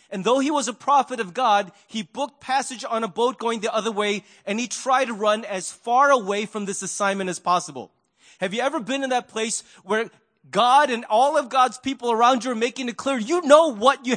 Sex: male